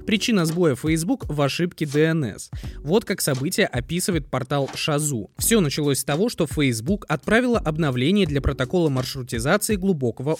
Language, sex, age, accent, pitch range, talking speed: Russian, male, 20-39, native, 140-200 Hz, 140 wpm